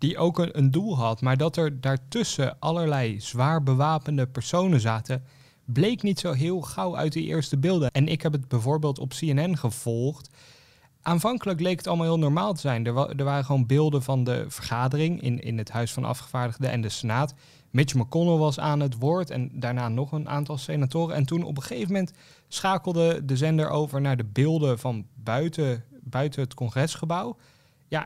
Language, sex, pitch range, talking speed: Dutch, male, 130-160 Hz, 185 wpm